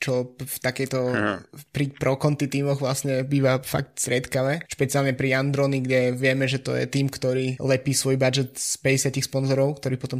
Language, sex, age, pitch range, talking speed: Slovak, male, 20-39, 130-140 Hz, 165 wpm